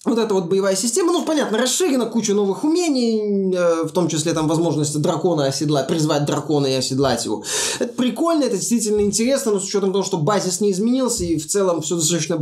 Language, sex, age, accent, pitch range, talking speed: Russian, male, 20-39, native, 150-200 Hz, 205 wpm